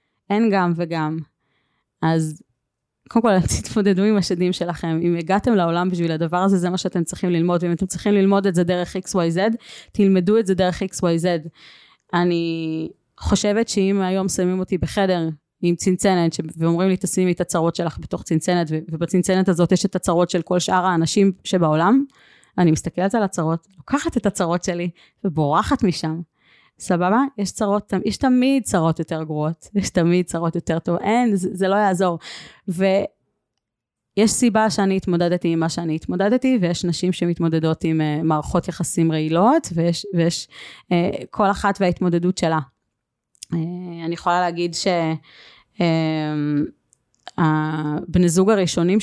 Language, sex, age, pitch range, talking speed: Hebrew, female, 30-49, 165-195 Hz, 155 wpm